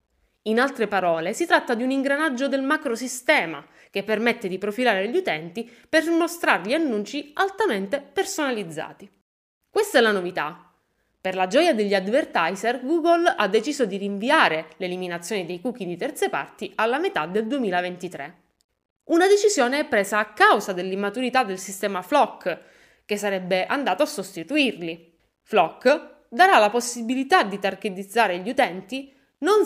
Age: 20-39